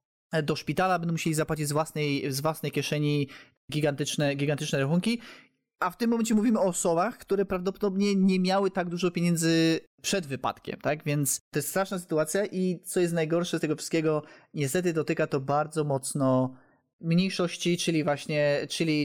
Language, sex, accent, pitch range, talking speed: Polish, male, native, 150-185 Hz, 160 wpm